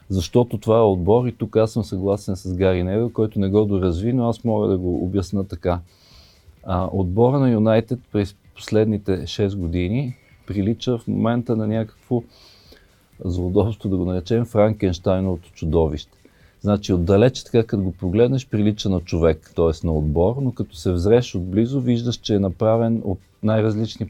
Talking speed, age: 160 wpm, 40-59